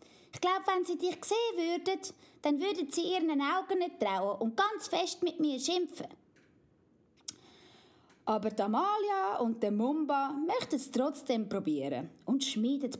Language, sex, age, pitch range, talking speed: German, female, 20-39, 220-335 Hz, 150 wpm